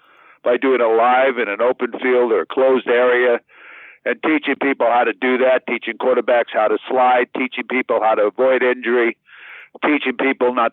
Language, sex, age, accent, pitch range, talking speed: English, male, 60-79, American, 120-150 Hz, 185 wpm